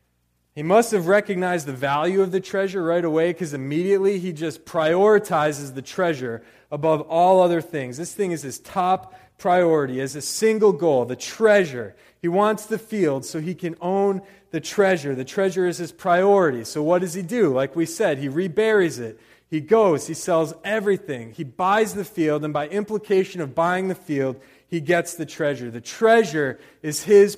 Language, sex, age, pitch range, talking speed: English, male, 30-49, 140-190 Hz, 185 wpm